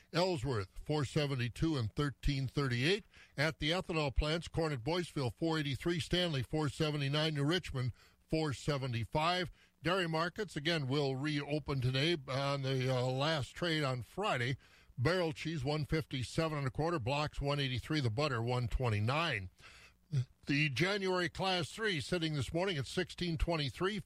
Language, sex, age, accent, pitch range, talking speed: English, male, 50-69, American, 130-170 Hz, 125 wpm